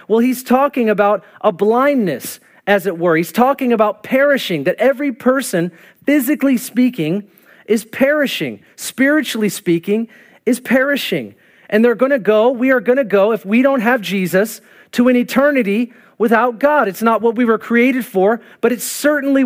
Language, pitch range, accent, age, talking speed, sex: English, 205-245 Hz, American, 40-59, 160 wpm, male